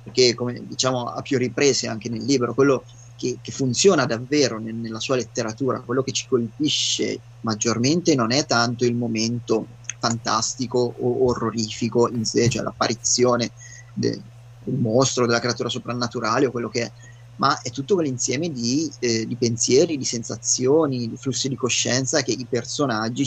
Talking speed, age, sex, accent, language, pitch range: 160 wpm, 30-49, male, native, Italian, 115-125 Hz